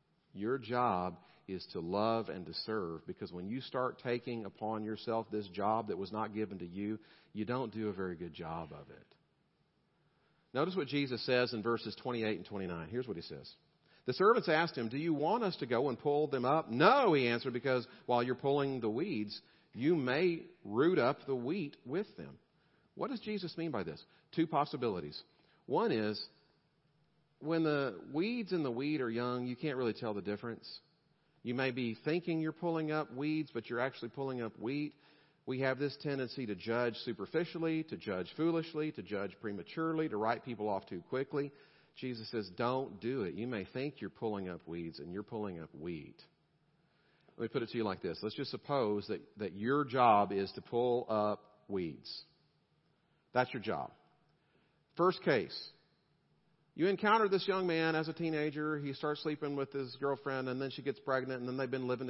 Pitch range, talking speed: 110-150 Hz, 190 wpm